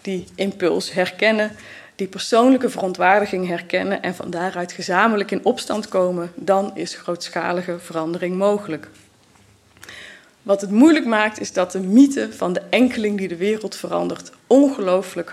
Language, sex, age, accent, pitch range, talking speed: Dutch, female, 20-39, Dutch, 175-205 Hz, 135 wpm